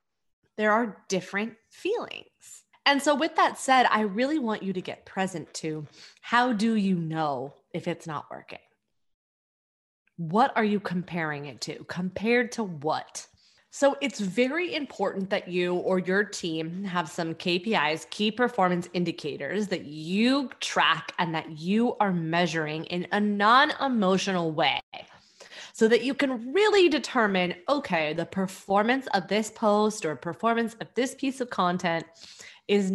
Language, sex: English, female